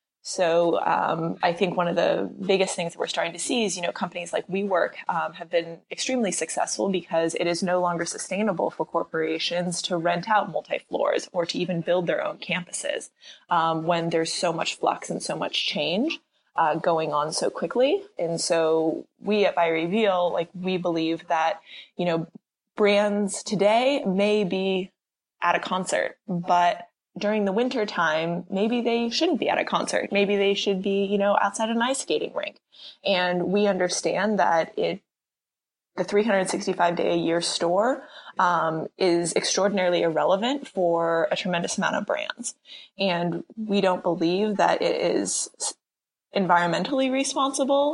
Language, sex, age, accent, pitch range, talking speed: English, female, 20-39, American, 170-210 Hz, 160 wpm